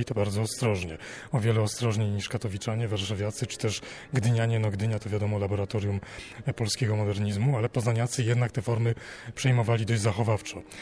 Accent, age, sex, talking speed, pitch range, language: native, 40-59, male, 150 wpm, 110-125 Hz, Polish